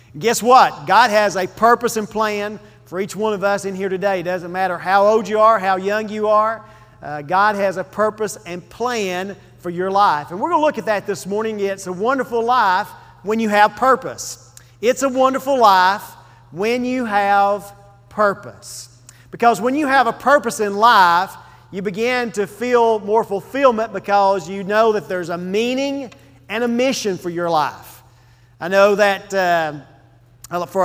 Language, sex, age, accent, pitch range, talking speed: English, male, 40-59, American, 180-220 Hz, 185 wpm